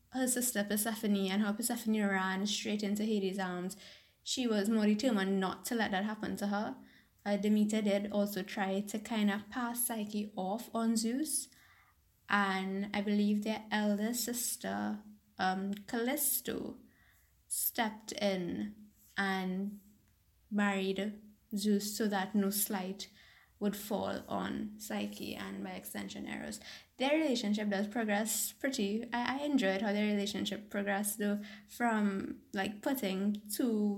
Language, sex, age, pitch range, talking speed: English, female, 10-29, 195-220 Hz, 135 wpm